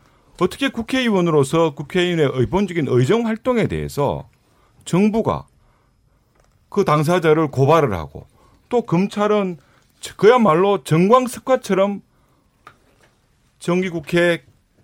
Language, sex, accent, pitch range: Korean, male, native, 125-200 Hz